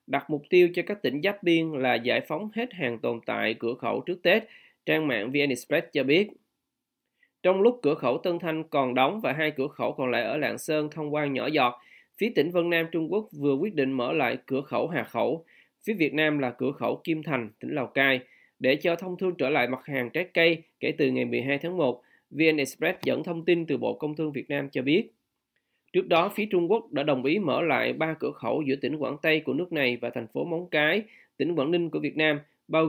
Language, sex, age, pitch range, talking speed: Vietnamese, male, 20-39, 135-170 Hz, 240 wpm